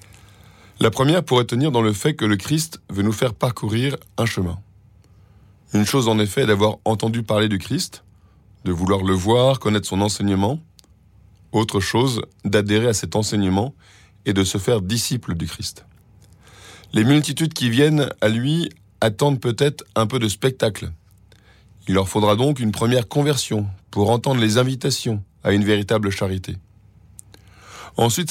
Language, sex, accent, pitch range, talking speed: French, male, French, 100-125 Hz, 155 wpm